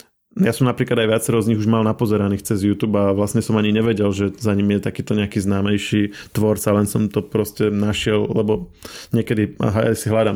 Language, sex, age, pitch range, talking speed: Slovak, male, 20-39, 100-115 Hz, 210 wpm